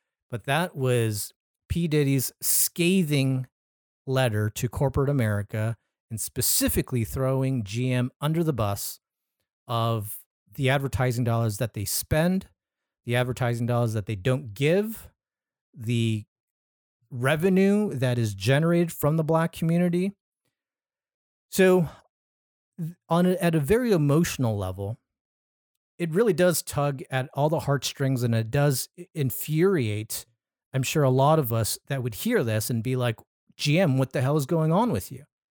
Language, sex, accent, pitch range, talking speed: English, male, American, 115-170 Hz, 140 wpm